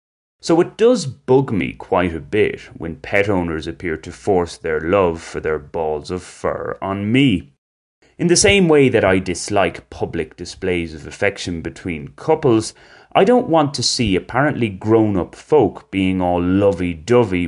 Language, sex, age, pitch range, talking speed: English, male, 30-49, 90-140 Hz, 160 wpm